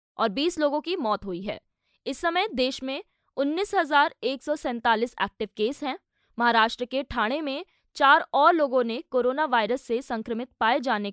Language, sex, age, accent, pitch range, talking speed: Hindi, female, 20-39, native, 225-295 Hz, 155 wpm